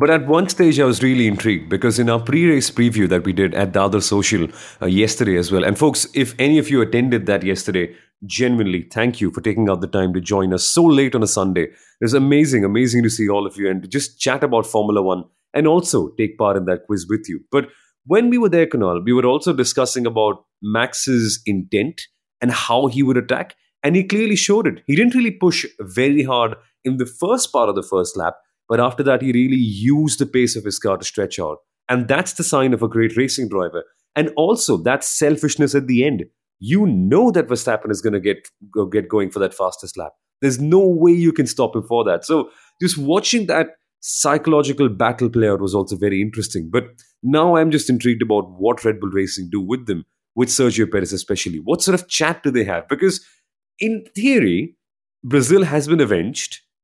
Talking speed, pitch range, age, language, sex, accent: 220 wpm, 105-150 Hz, 30-49, English, male, Indian